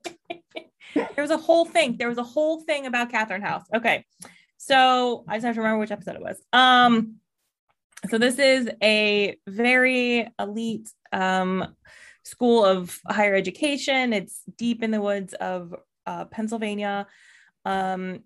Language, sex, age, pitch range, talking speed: English, female, 20-39, 190-240 Hz, 150 wpm